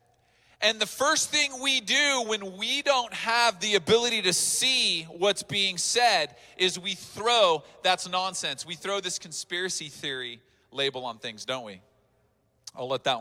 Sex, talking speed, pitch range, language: male, 160 wpm, 145-215 Hz, English